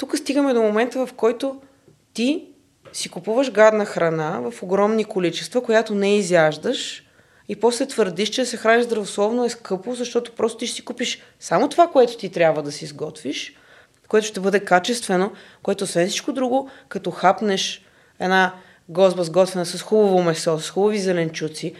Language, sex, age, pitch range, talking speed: Bulgarian, female, 20-39, 175-220 Hz, 165 wpm